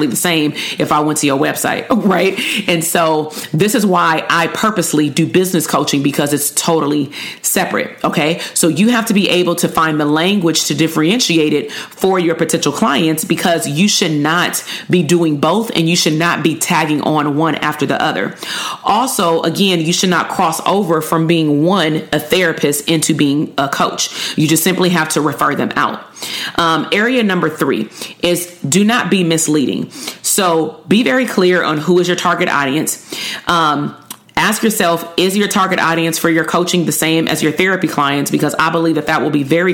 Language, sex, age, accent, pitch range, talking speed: English, female, 40-59, American, 155-185 Hz, 190 wpm